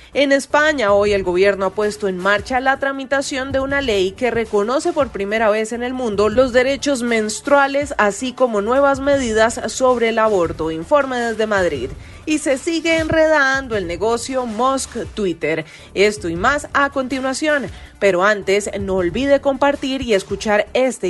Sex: female